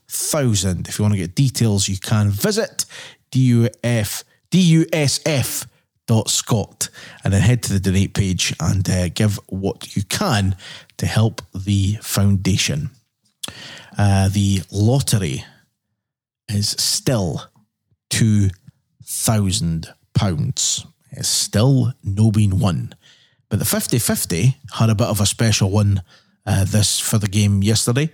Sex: male